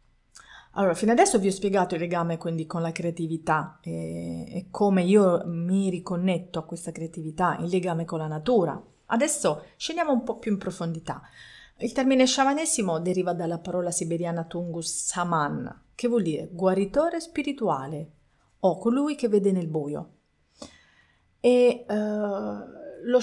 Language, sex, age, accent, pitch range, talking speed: Italian, female, 40-59, native, 170-225 Hz, 140 wpm